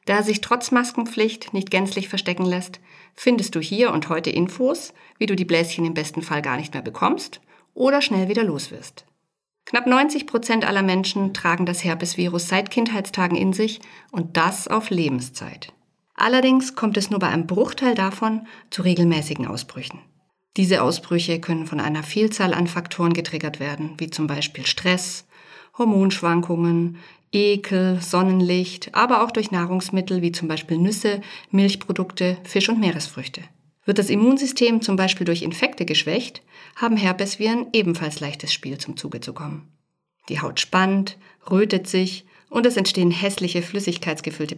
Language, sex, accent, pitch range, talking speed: German, female, German, 165-210 Hz, 150 wpm